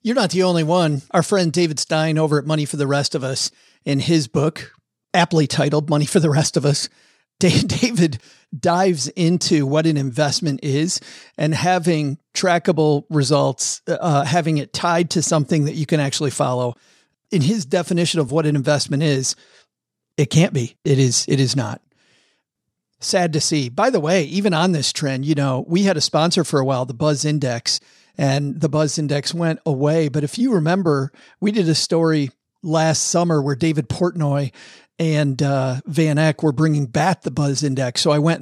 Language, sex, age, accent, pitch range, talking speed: English, male, 40-59, American, 140-170 Hz, 185 wpm